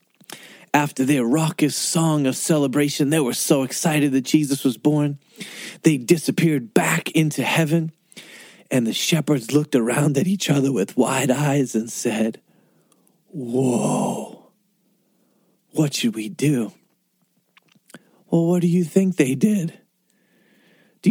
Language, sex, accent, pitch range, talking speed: English, male, American, 145-175 Hz, 130 wpm